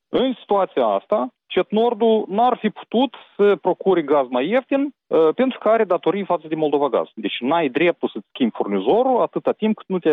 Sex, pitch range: male, 115-185 Hz